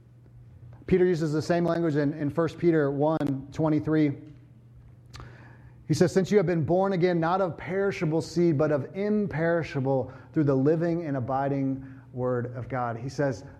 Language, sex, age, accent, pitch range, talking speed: English, male, 30-49, American, 120-145 Hz, 155 wpm